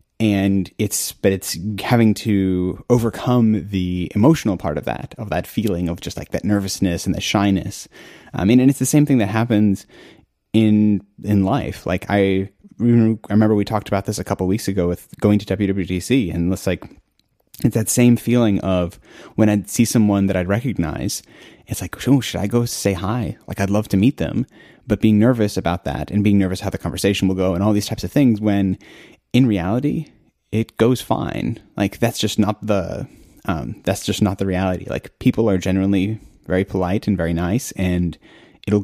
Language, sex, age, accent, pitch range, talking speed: English, male, 30-49, American, 95-110 Hz, 200 wpm